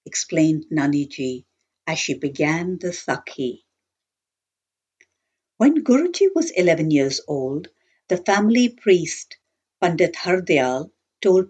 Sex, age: female, 60-79